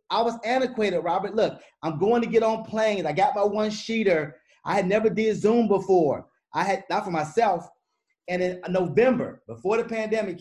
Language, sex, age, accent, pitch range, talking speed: English, male, 30-49, American, 170-210 Hz, 190 wpm